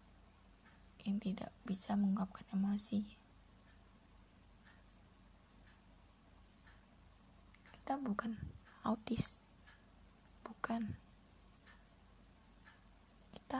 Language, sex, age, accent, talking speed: Indonesian, female, 20-39, native, 45 wpm